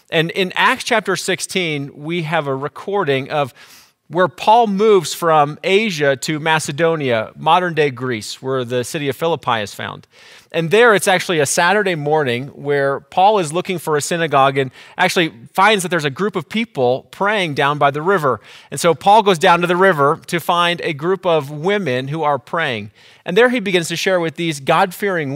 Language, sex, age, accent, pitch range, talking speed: English, male, 30-49, American, 140-185 Hz, 190 wpm